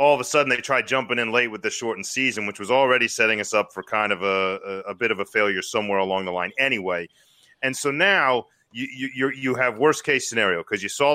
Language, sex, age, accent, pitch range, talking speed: English, male, 30-49, American, 105-140 Hz, 255 wpm